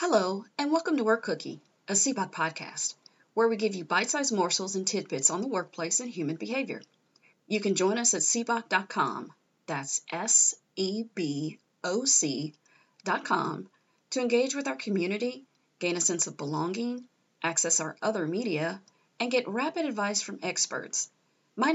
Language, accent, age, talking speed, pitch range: English, American, 40-59, 145 wpm, 175-240 Hz